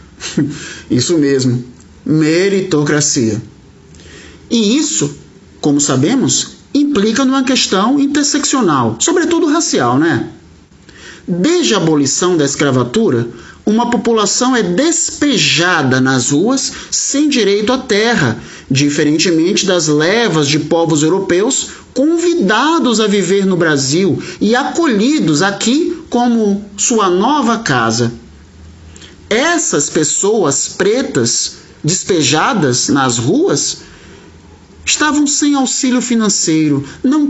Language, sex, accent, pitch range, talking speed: Portuguese, male, Brazilian, 160-265 Hz, 95 wpm